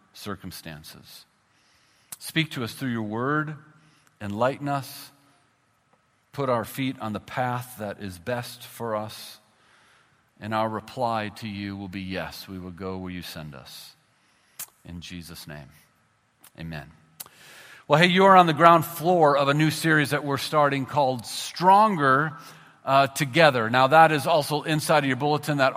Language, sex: English, male